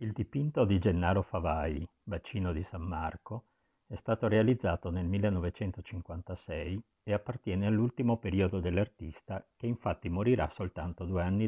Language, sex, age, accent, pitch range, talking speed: Italian, male, 50-69, native, 85-110 Hz, 130 wpm